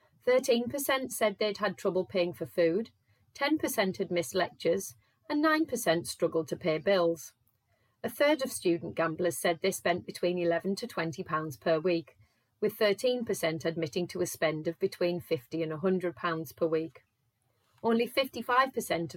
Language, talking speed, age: English, 145 wpm, 30-49